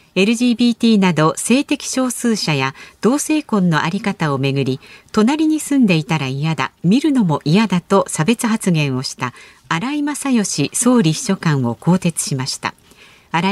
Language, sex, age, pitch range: Japanese, female, 50-69, 160-230 Hz